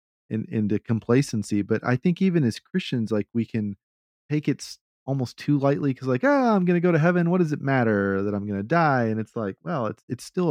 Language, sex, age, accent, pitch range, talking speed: English, male, 40-59, American, 105-130 Hz, 235 wpm